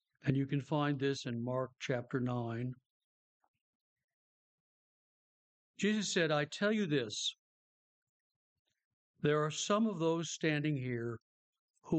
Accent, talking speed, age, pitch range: American, 115 wpm, 60-79, 125-170 Hz